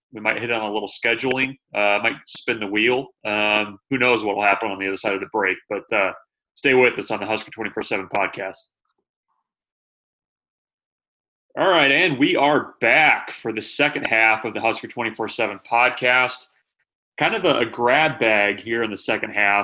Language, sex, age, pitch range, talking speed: English, male, 30-49, 105-125 Hz, 185 wpm